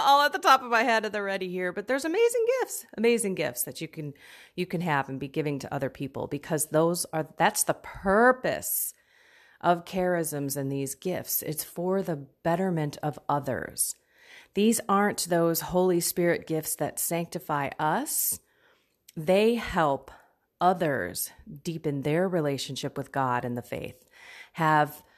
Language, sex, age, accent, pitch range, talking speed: English, female, 30-49, American, 155-205 Hz, 155 wpm